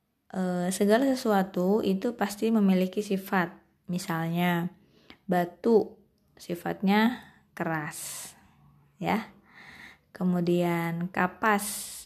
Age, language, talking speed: 20-39, Indonesian, 65 wpm